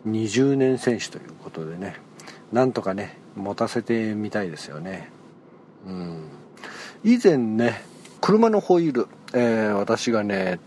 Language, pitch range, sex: Japanese, 105-135 Hz, male